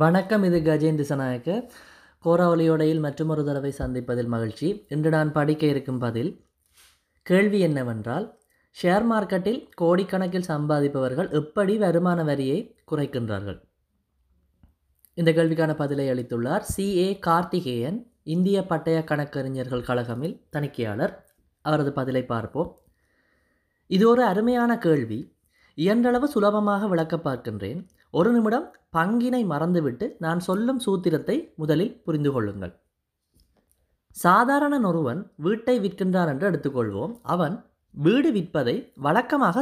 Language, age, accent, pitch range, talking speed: Tamil, 20-39, native, 130-205 Hz, 95 wpm